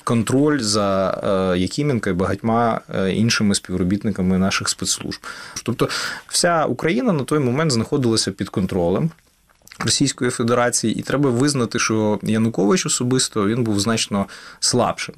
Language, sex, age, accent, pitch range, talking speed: Ukrainian, male, 20-39, native, 100-130 Hz, 125 wpm